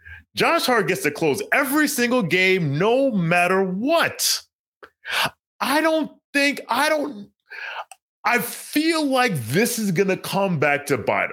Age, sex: 30-49, male